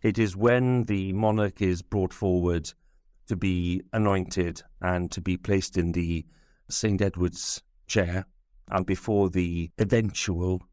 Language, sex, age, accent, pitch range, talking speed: English, male, 50-69, British, 95-120 Hz, 135 wpm